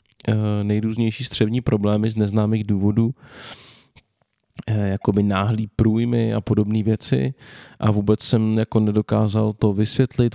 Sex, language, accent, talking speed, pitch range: male, Czech, native, 110 wpm, 105-115 Hz